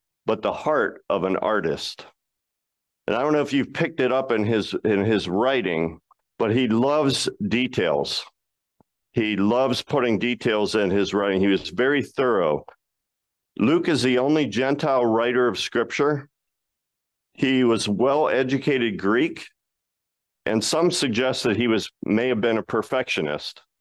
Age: 50-69